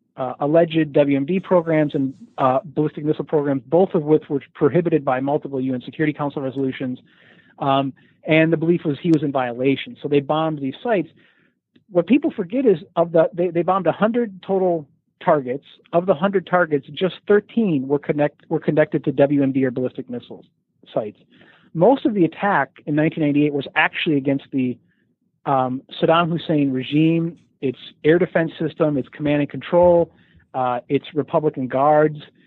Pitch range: 140-170 Hz